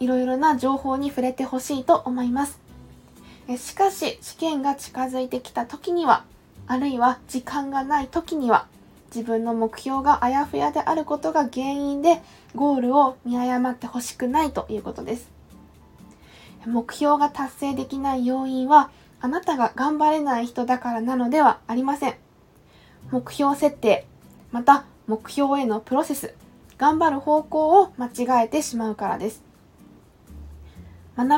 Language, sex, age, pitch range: Japanese, female, 20-39, 245-285 Hz